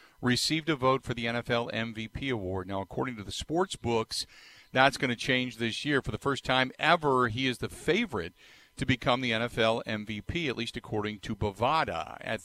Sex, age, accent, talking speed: male, 50-69, American, 195 wpm